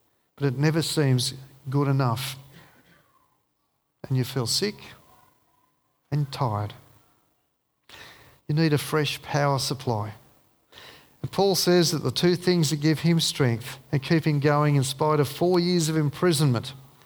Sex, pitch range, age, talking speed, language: male, 130-165 Hz, 50-69, 140 wpm, English